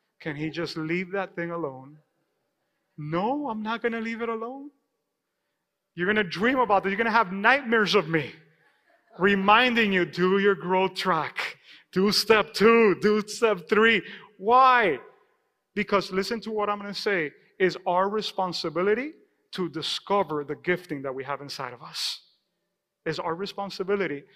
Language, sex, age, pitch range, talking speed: English, male, 30-49, 175-220 Hz, 160 wpm